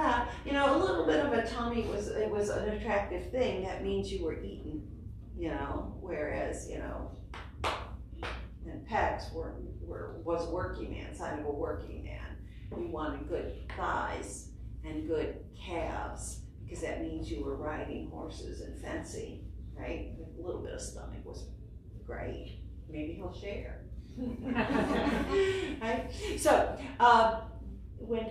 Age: 40-59